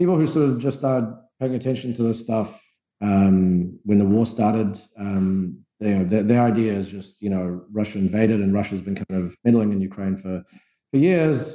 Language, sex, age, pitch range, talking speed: English, male, 30-49, 100-120 Hz, 215 wpm